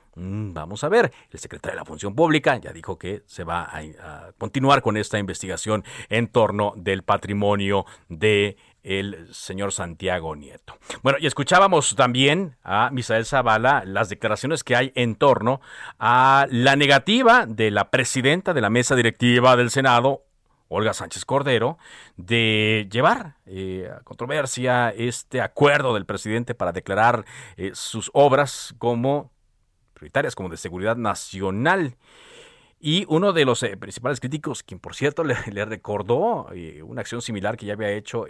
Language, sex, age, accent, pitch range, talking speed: Spanish, male, 50-69, Mexican, 100-135 Hz, 145 wpm